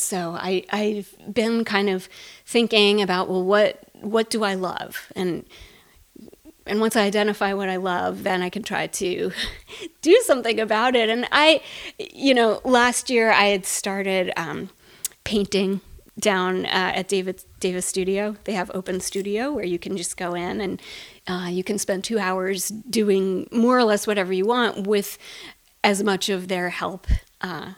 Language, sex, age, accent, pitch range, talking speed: English, female, 30-49, American, 190-235 Hz, 170 wpm